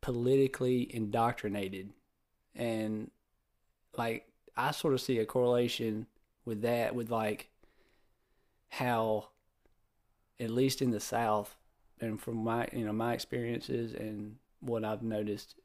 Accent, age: American, 20-39